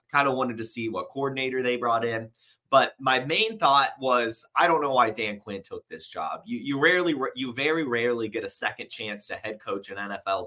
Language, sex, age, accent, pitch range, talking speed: English, male, 20-39, American, 115-160 Hz, 225 wpm